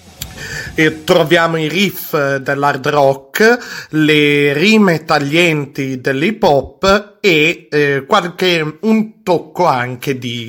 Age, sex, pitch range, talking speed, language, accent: 30-49, male, 135-180 Hz, 105 wpm, Italian, native